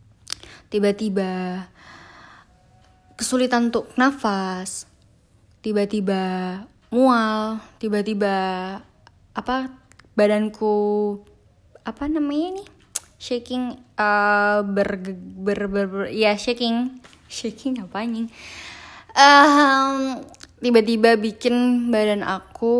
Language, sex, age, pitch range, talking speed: Indonesian, female, 10-29, 185-235 Hz, 65 wpm